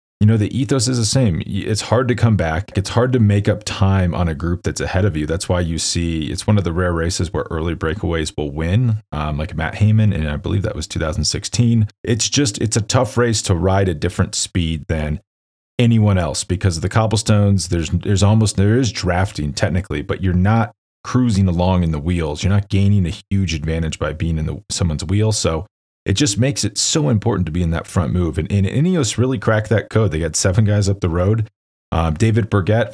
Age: 30-49